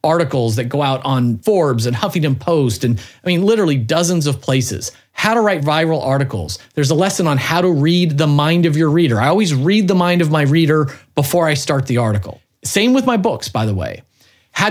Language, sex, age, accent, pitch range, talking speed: English, male, 40-59, American, 130-190 Hz, 220 wpm